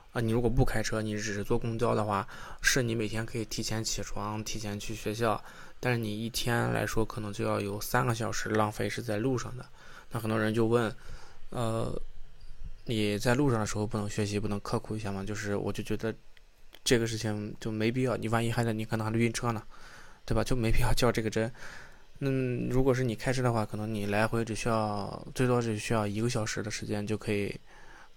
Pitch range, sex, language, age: 105-120 Hz, male, Chinese, 20-39